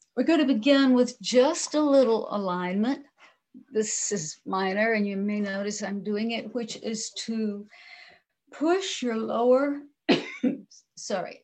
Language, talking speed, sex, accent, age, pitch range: English, 130 wpm, female, American, 60-79, 195-240 Hz